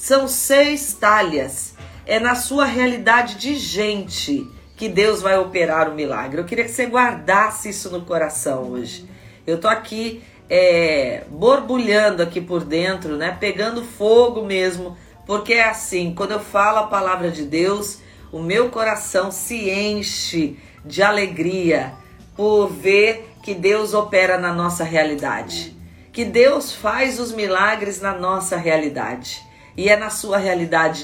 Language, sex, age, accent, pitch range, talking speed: Portuguese, female, 40-59, Brazilian, 175-235 Hz, 140 wpm